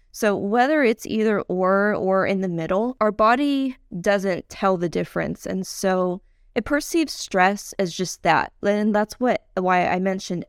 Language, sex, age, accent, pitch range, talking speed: English, female, 20-39, American, 185-220 Hz, 160 wpm